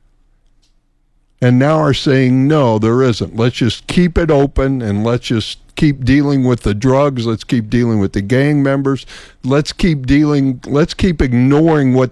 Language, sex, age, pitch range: English, male, 60-79, 100-160 Hz